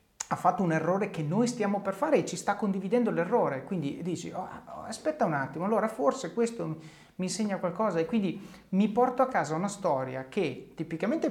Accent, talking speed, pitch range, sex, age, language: native, 185 wpm, 150-200 Hz, male, 30-49, Italian